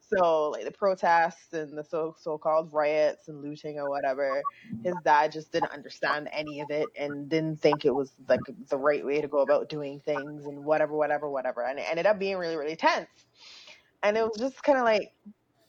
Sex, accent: female, American